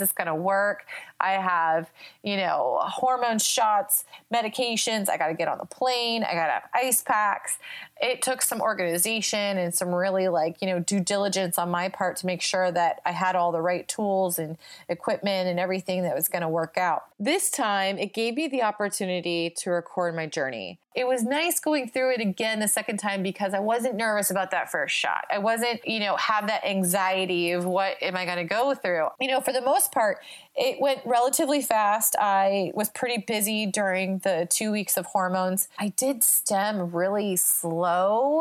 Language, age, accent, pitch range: English, 30-49, American, 180-235 Hz